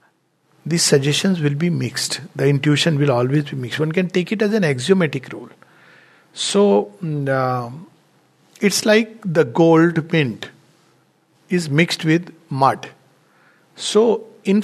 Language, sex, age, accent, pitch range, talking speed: English, male, 60-79, Indian, 150-205 Hz, 130 wpm